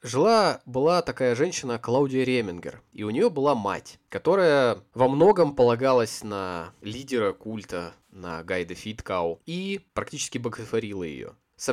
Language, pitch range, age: Russian, 115-165 Hz, 20-39